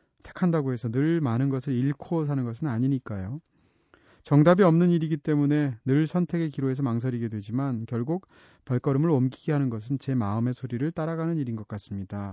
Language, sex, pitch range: Korean, male, 120-165 Hz